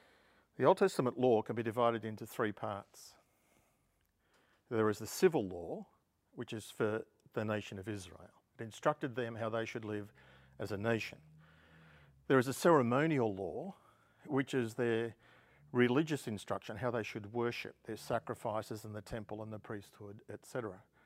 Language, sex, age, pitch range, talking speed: English, male, 50-69, 105-125 Hz, 155 wpm